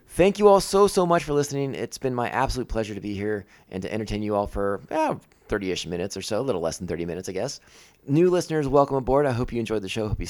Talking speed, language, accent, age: 275 wpm, English, American, 30-49